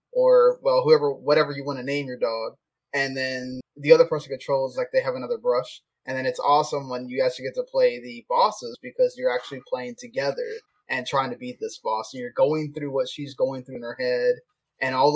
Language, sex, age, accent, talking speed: English, male, 20-39, American, 225 wpm